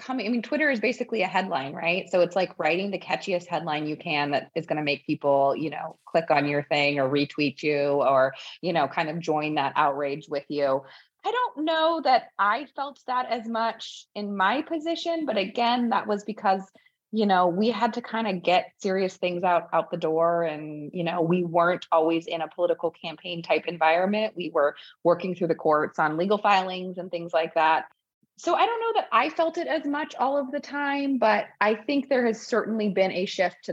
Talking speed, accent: 220 wpm, American